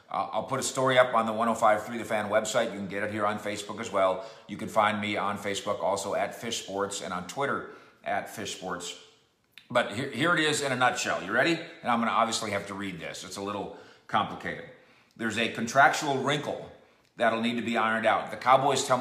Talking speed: 225 wpm